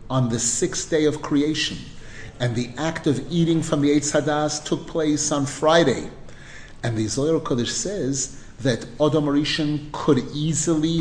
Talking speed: 160 wpm